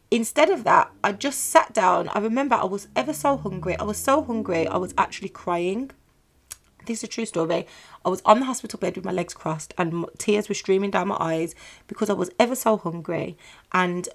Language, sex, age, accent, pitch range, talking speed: English, female, 30-49, British, 180-225 Hz, 215 wpm